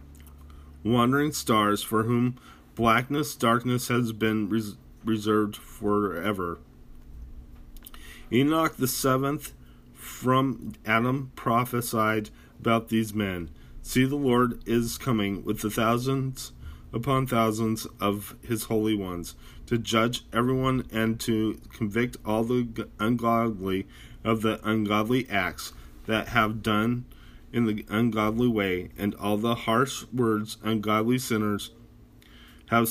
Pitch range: 105-120 Hz